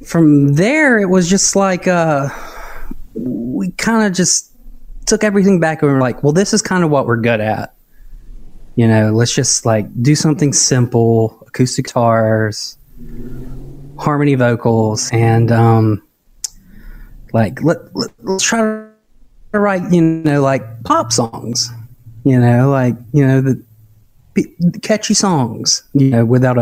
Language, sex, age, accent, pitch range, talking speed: English, male, 20-39, American, 115-155 Hz, 140 wpm